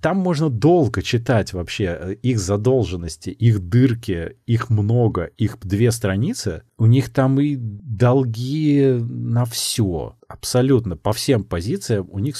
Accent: native